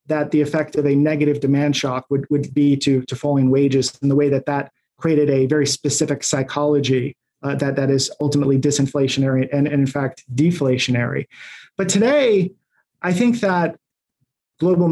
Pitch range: 140-160 Hz